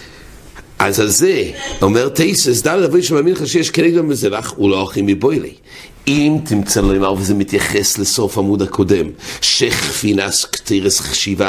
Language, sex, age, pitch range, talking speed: English, male, 60-79, 105-155 Hz, 125 wpm